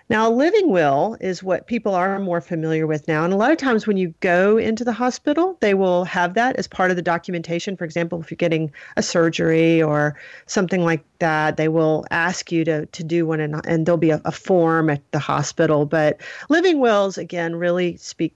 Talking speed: 220 wpm